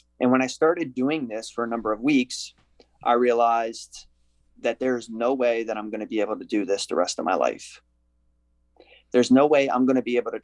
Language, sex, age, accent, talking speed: English, male, 20-39, American, 230 wpm